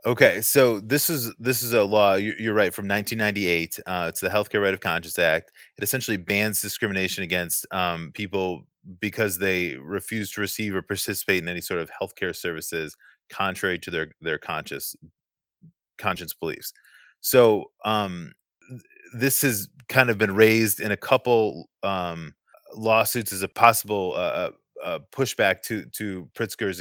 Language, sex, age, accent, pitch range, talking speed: English, male, 30-49, American, 95-115 Hz, 155 wpm